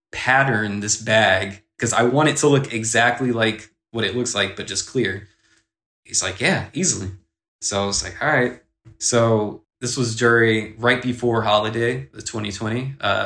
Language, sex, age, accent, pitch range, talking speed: English, male, 20-39, American, 105-120 Hz, 170 wpm